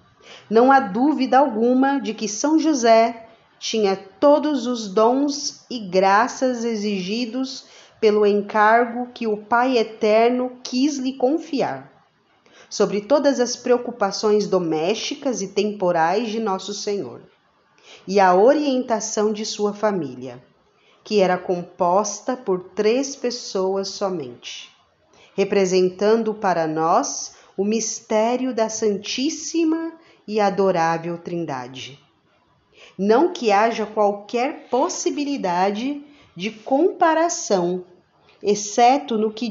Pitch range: 185-245 Hz